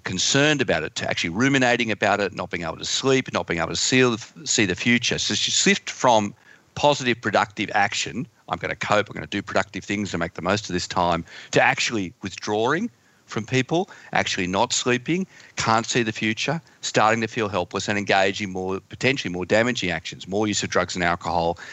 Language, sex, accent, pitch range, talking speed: English, male, Australian, 95-120 Hz, 195 wpm